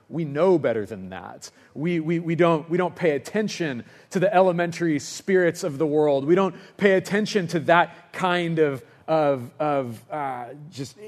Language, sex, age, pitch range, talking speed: English, male, 30-49, 145-210 Hz, 150 wpm